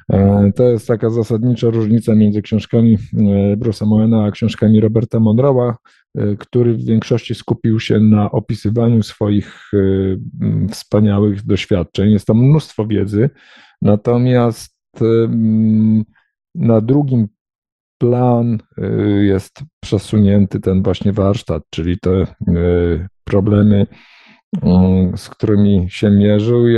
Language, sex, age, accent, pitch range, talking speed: Polish, male, 50-69, native, 100-120 Hz, 100 wpm